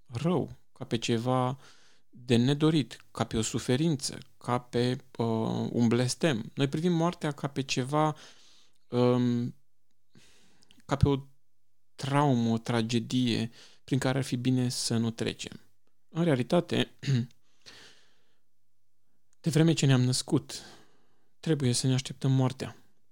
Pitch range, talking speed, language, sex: 110-135 Hz, 115 wpm, Romanian, male